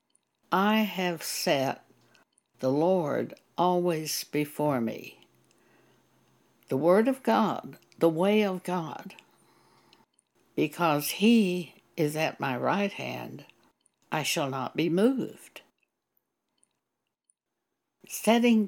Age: 60-79